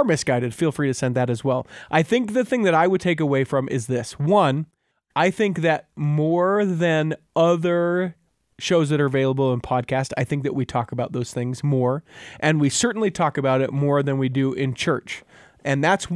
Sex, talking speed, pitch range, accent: male, 210 wpm, 130-170 Hz, American